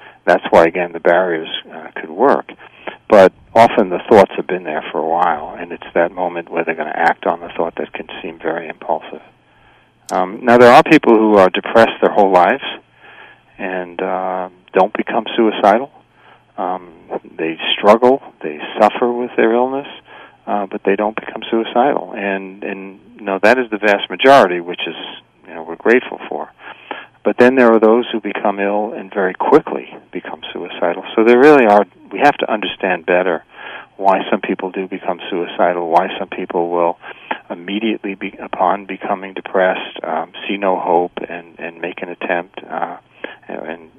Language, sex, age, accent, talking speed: English, male, 40-59, American, 175 wpm